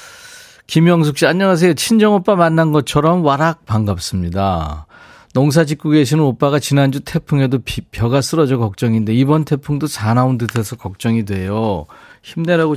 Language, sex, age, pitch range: Korean, male, 40-59, 110-160 Hz